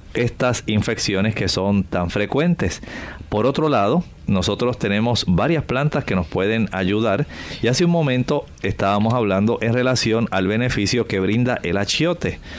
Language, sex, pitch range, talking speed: Spanish, male, 95-130 Hz, 150 wpm